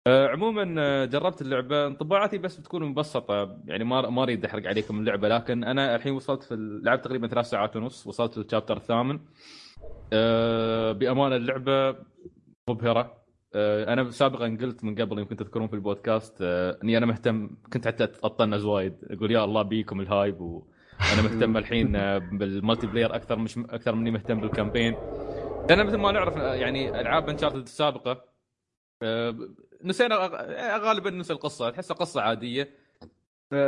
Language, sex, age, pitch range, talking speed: Arabic, male, 20-39, 105-130 Hz, 150 wpm